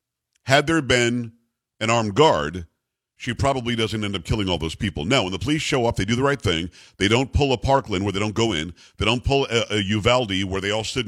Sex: male